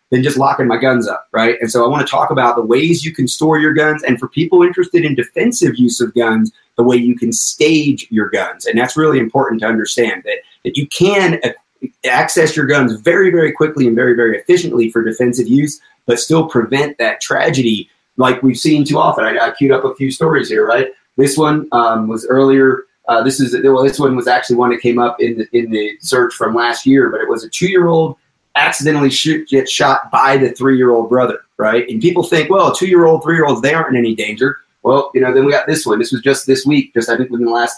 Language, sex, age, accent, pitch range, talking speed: English, male, 30-49, American, 120-155 Hz, 235 wpm